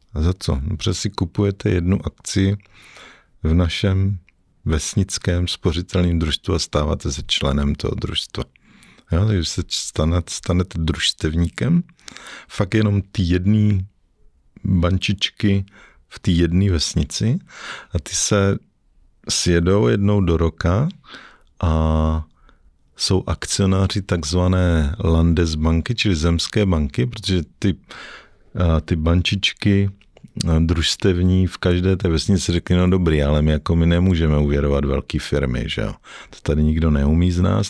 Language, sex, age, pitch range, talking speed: Czech, male, 50-69, 80-95 Hz, 125 wpm